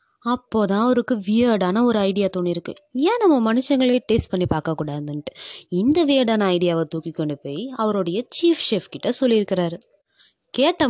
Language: Tamil